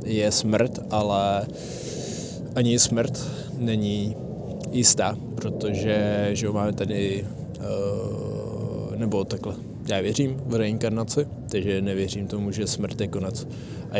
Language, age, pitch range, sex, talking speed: Czech, 20-39, 100-115 Hz, male, 110 wpm